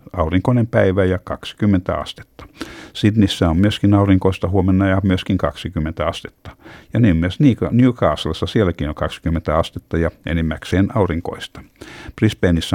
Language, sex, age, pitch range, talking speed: Finnish, male, 60-79, 85-105 Hz, 120 wpm